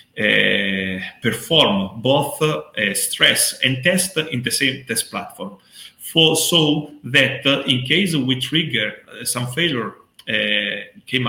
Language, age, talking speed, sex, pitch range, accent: English, 40-59, 130 wpm, male, 120-150 Hz, Italian